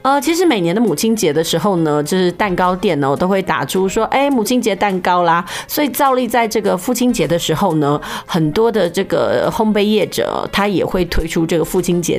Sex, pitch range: female, 175-235 Hz